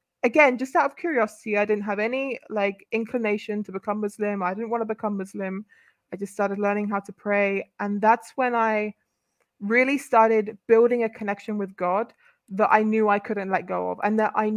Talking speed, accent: 200 wpm, British